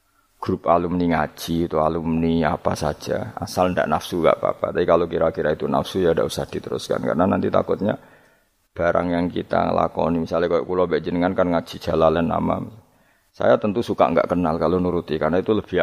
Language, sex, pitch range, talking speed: Indonesian, male, 85-100 Hz, 180 wpm